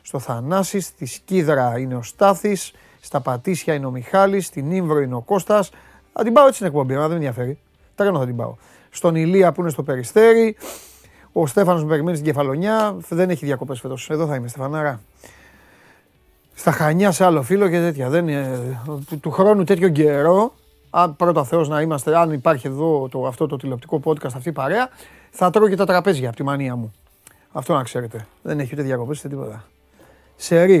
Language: Greek